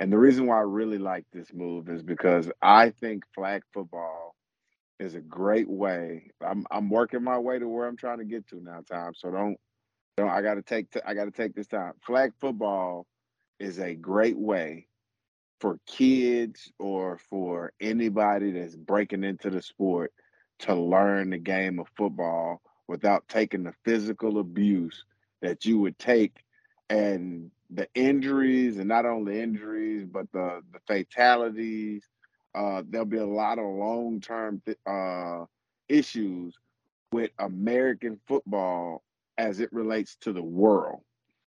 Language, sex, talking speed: English, male, 150 wpm